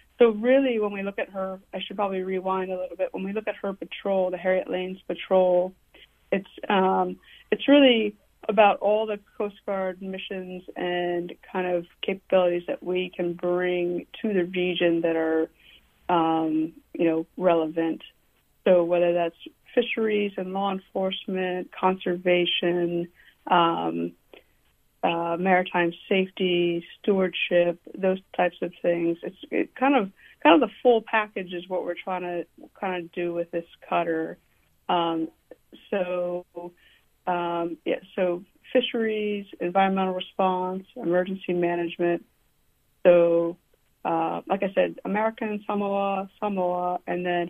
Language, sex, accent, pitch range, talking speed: English, female, American, 175-200 Hz, 140 wpm